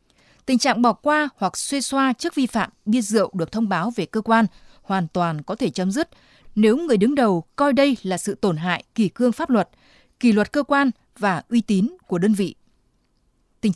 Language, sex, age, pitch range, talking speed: Vietnamese, female, 20-39, 190-250 Hz, 215 wpm